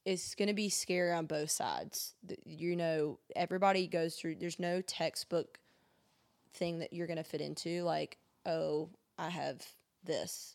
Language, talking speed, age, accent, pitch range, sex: English, 160 wpm, 20-39, American, 160-180 Hz, female